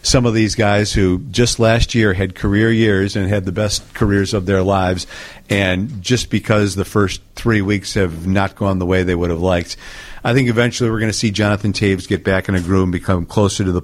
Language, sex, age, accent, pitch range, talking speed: English, male, 50-69, American, 95-110 Hz, 235 wpm